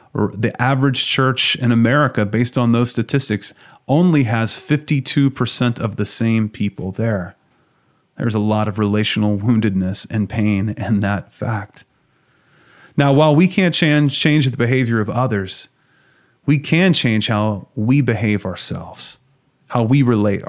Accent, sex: American, male